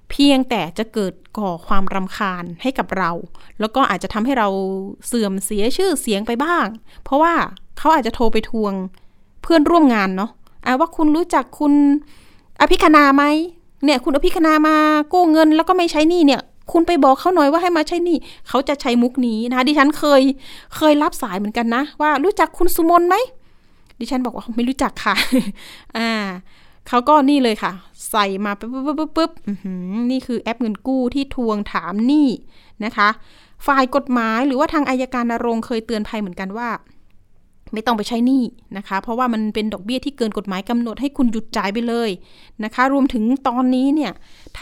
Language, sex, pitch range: Thai, female, 210-285 Hz